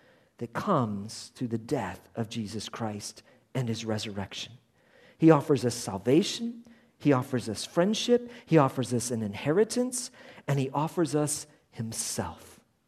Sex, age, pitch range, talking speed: male, 50-69, 125-170 Hz, 135 wpm